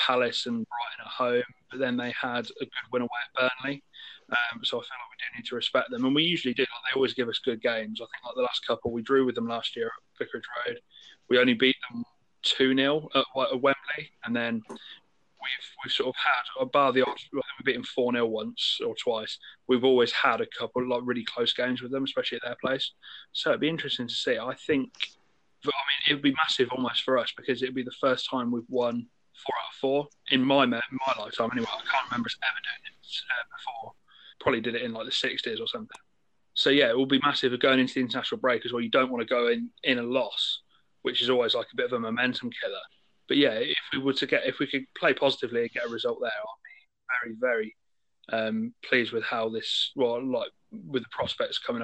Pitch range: 120-155 Hz